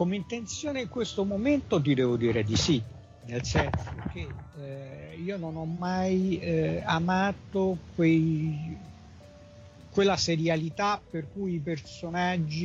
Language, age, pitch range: Italian, 50-69, 130-170 Hz